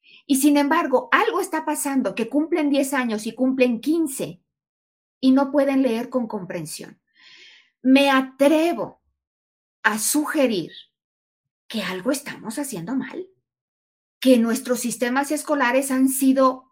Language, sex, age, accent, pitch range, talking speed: Portuguese, female, 40-59, Mexican, 225-290 Hz, 120 wpm